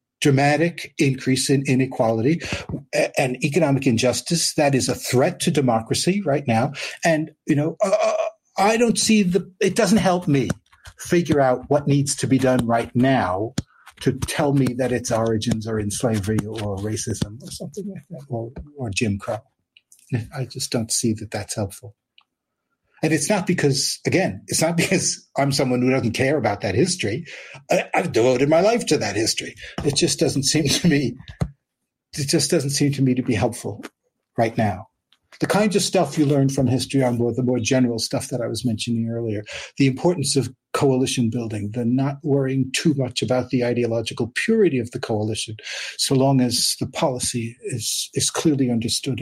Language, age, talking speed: English, 60-79, 180 wpm